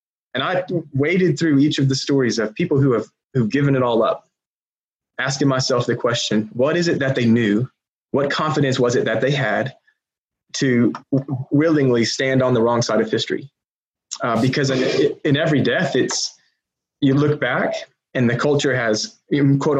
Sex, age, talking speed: male, 20-39, 175 wpm